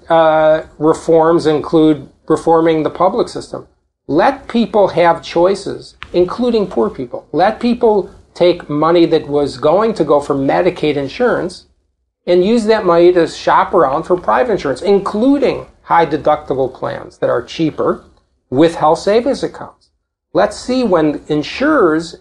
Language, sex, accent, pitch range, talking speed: English, male, American, 150-185 Hz, 140 wpm